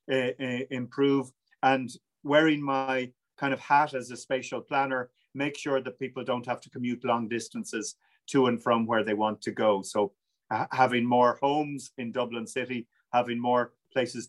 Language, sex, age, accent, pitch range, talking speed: English, male, 40-59, Irish, 125-150 Hz, 165 wpm